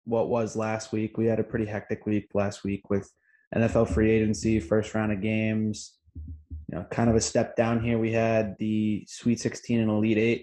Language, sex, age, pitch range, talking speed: English, male, 20-39, 110-125 Hz, 205 wpm